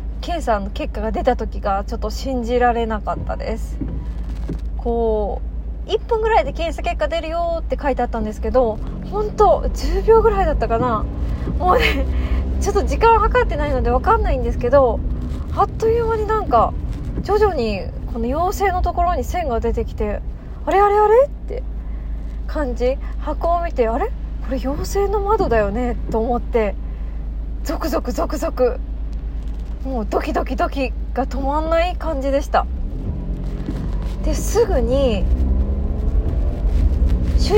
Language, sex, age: Japanese, female, 20-39